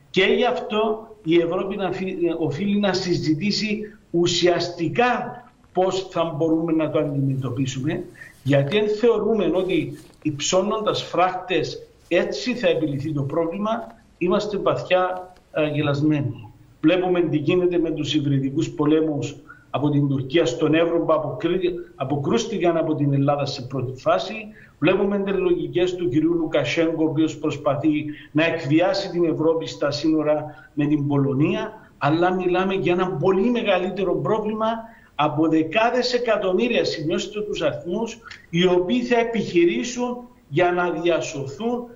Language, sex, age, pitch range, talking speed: Greek, male, 50-69, 155-190 Hz, 125 wpm